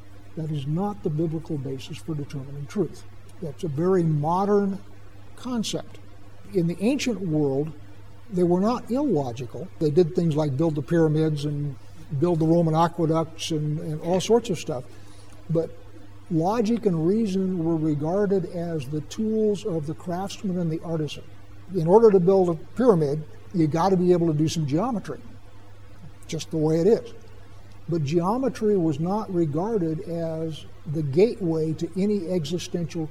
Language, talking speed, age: English, 155 wpm, 60-79